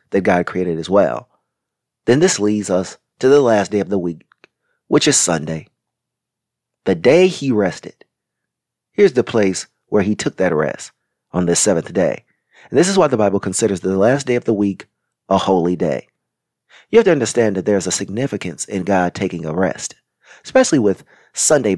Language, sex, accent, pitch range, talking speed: English, male, American, 90-110 Hz, 185 wpm